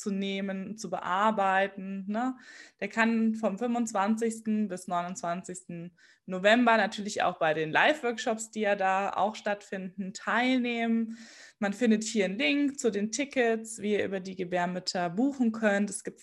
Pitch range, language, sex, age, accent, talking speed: 180-225 Hz, German, female, 20-39, German, 150 wpm